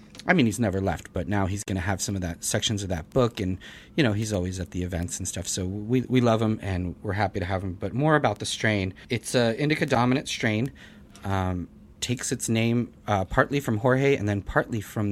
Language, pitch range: English, 95-115 Hz